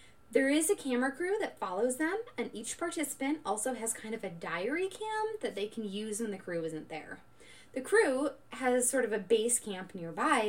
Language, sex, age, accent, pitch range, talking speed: English, female, 10-29, American, 220-320 Hz, 205 wpm